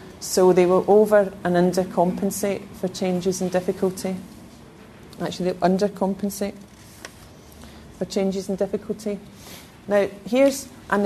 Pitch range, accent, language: 175-200 Hz, British, English